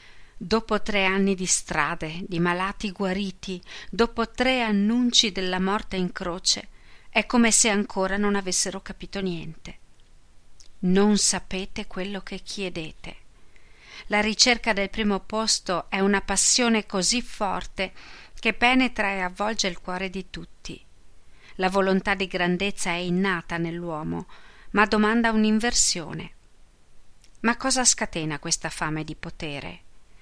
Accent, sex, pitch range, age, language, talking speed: native, female, 180-215 Hz, 40-59, Italian, 125 wpm